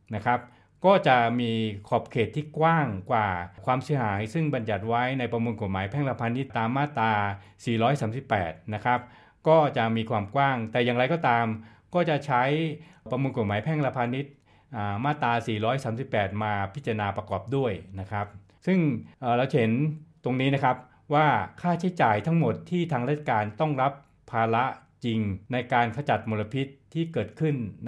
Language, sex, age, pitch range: Thai, male, 60-79, 110-145 Hz